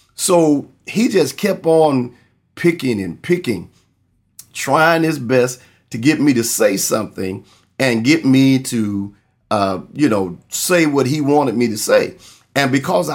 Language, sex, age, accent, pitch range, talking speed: English, male, 40-59, American, 110-140 Hz, 150 wpm